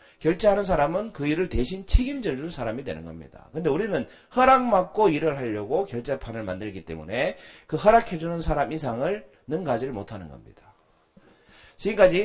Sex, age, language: male, 40-59, Korean